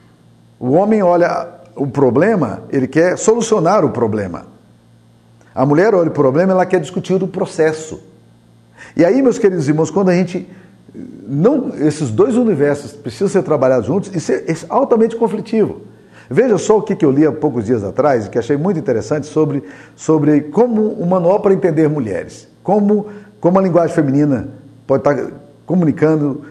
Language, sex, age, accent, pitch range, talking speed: Portuguese, male, 50-69, Brazilian, 120-175 Hz, 160 wpm